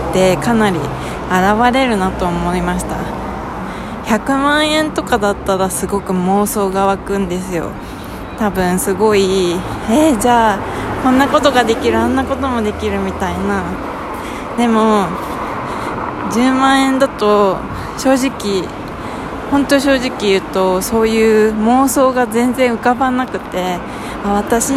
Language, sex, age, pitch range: Japanese, female, 20-39, 190-245 Hz